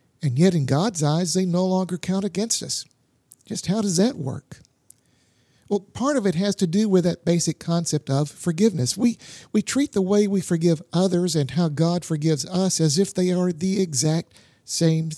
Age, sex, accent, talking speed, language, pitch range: 50-69, male, American, 195 wpm, English, 150-190 Hz